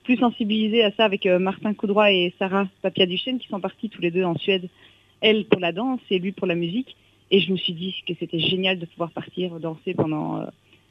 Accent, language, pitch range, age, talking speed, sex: French, French, 175-220 Hz, 40-59, 235 wpm, female